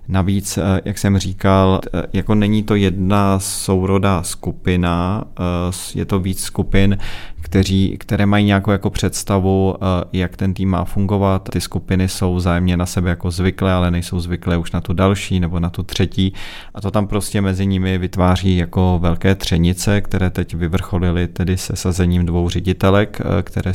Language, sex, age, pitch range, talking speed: Czech, male, 30-49, 85-95 Hz, 160 wpm